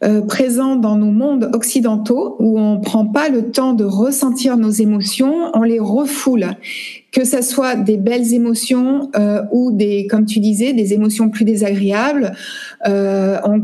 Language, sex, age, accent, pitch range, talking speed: French, female, 60-79, French, 210-260 Hz, 165 wpm